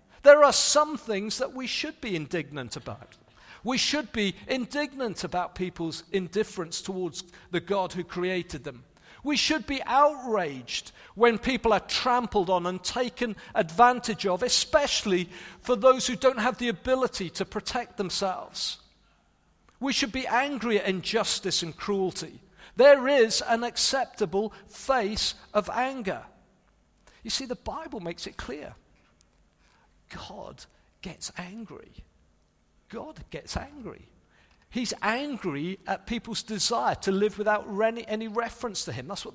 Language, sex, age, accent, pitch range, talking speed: English, male, 50-69, British, 185-245 Hz, 135 wpm